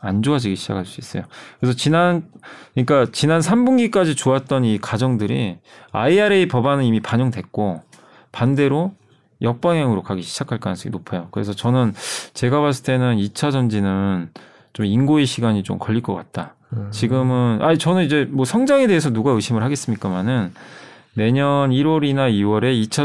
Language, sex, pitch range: Korean, male, 110-160 Hz